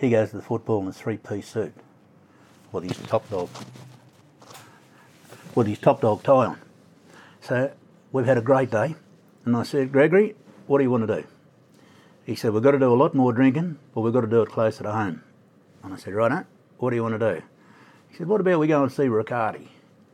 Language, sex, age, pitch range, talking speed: English, male, 60-79, 110-140 Hz, 220 wpm